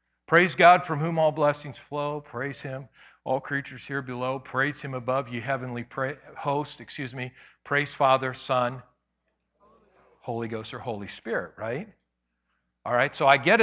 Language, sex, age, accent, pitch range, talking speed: English, male, 50-69, American, 125-160 Hz, 155 wpm